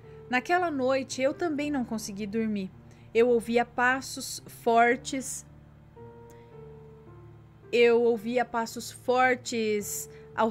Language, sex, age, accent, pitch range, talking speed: Portuguese, female, 20-39, Brazilian, 205-285 Hz, 90 wpm